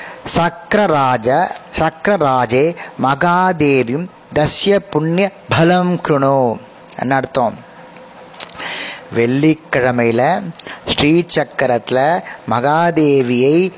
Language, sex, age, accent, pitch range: Tamil, male, 20-39, native, 130-160 Hz